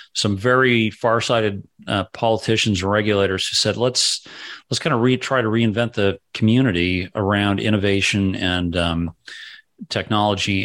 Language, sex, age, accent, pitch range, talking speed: English, male, 40-59, American, 95-115 Hz, 135 wpm